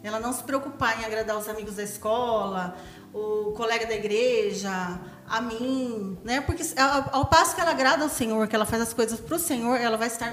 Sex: female